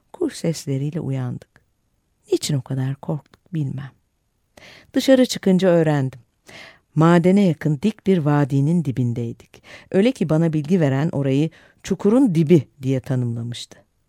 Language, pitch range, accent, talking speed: Turkish, 130-180 Hz, native, 115 wpm